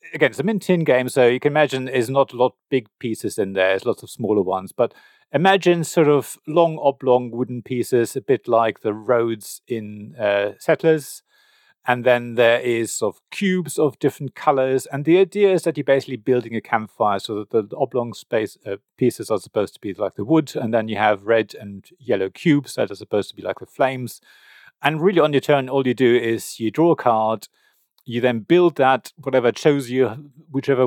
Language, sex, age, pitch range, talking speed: English, male, 40-59, 120-150 Hz, 220 wpm